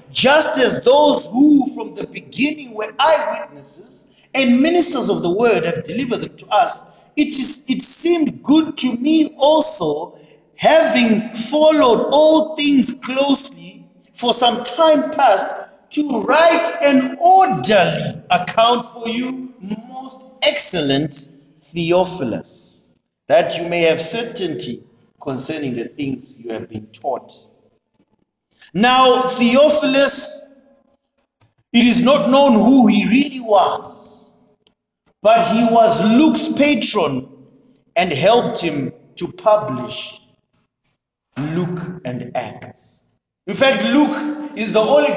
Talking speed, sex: 115 wpm, male